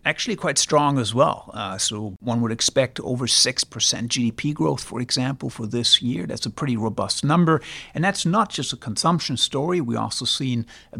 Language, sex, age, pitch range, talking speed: English, male, 60-79, 115-150 Hz, 190 wpm